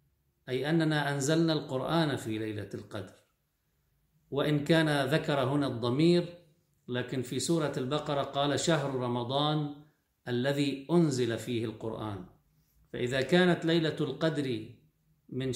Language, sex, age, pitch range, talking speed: Arabic, male, 50-69, 125-150 Hz, 110 wpm